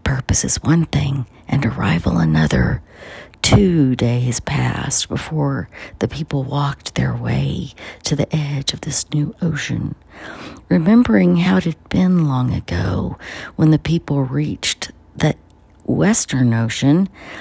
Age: 50-69